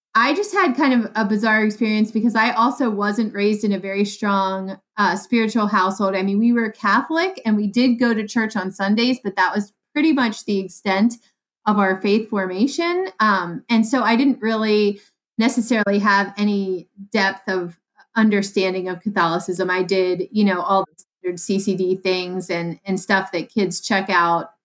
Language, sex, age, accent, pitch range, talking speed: English, female, 30-49, American, 185-225 Hz, 180 wpm